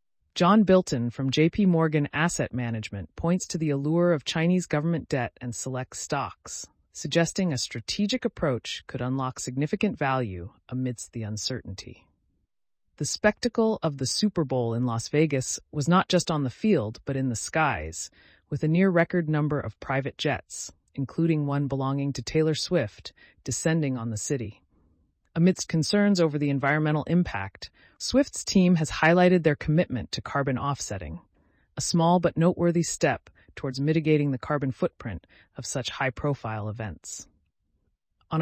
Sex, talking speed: female, 150 wpm